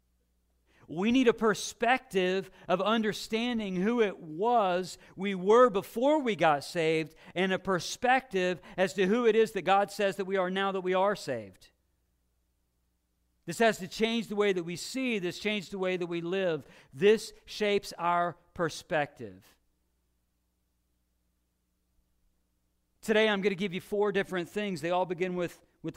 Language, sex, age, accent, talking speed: English, male, 50-69, American, 155 wpm